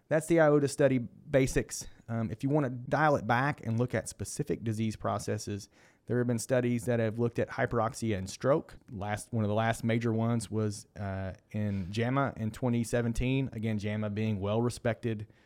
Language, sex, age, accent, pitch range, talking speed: English, male, 30-49, American, 105-135 Hz, 185 wpm